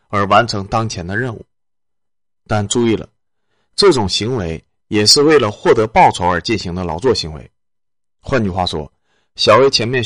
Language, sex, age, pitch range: Chinese, male, 30-49, 95-115 Hz